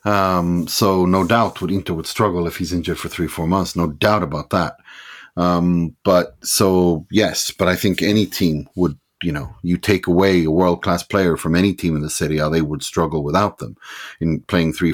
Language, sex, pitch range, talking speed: English, male, 85-105 Hz, 215 wpm